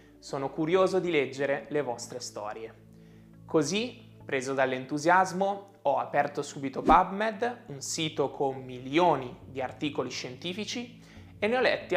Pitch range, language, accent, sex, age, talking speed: 130-195 Hz, Italian, native, male, 20-39, 125 wpm